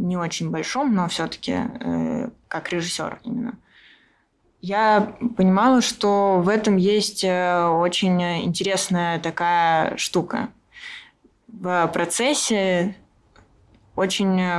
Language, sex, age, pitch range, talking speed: Russian, female, 20-39, 165-200 Hz, 90 wpm